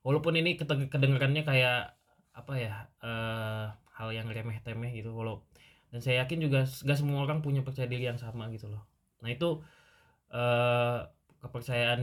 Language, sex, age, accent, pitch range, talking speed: Indonesian, male, 20-39, native, 110-130 Hz, 150 wpm